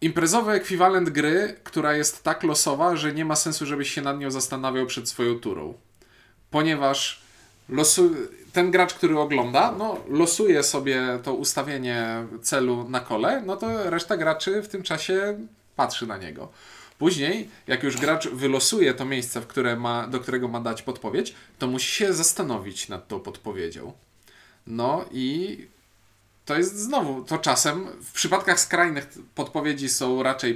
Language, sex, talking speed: Polish, male, 155 wpm